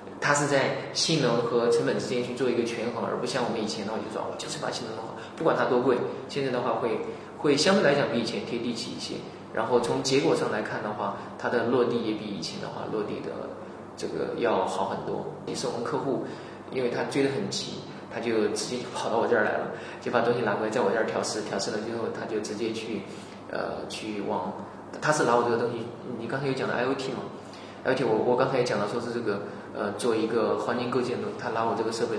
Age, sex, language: 20-39, male, Chinese